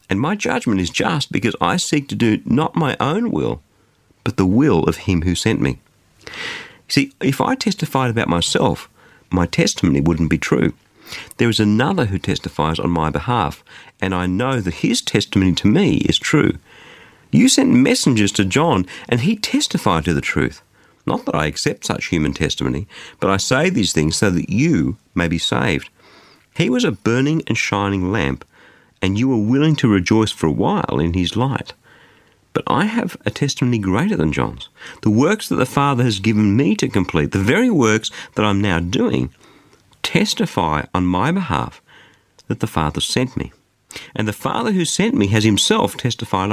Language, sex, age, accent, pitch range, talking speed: English, male, 50-69, Australian, 95-130 Hz, 185 wpm